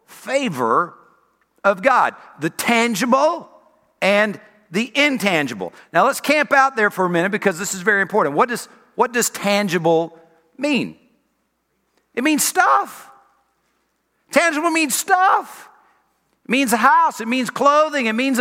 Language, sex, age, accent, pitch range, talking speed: English, male, 50-69, American, 200-275 Hz, 135 wpm